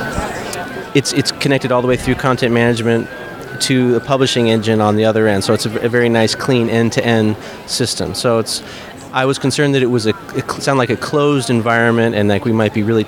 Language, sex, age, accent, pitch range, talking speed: English, male, 30-49, American, 110-125 Hz, 215 wpm